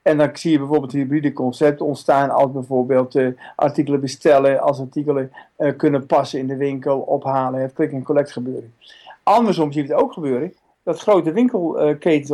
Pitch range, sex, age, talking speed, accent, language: 145-185 Hz, male, 50-69, 175 wpm, Dutch, Dutch